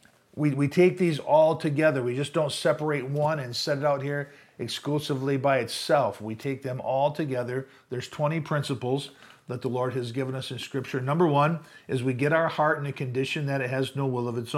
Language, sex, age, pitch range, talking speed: English, male, 50-69, 125-150 Hz, 215 wpm